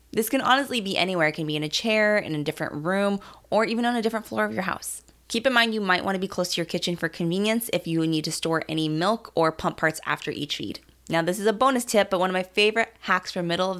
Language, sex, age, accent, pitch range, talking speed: English, female, 20-39, American, 165-205 Hz, 285 wpm